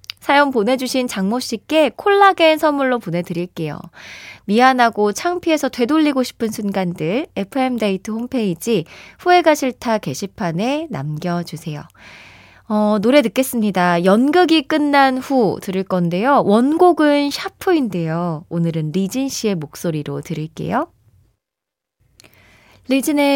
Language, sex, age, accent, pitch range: Korean, female, 20-39, native, 175-270 Hz